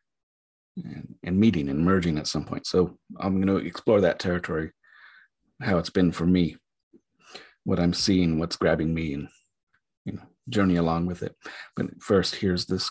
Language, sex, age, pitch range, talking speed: English, male, 30-49, 90-115 Hz, 170 wpm